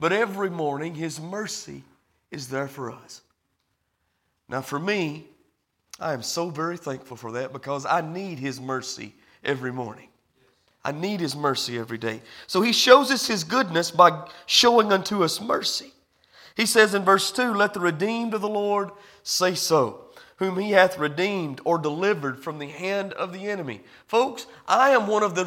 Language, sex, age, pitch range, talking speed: English, male, 40-59, 170-225 Hz, 175 wpm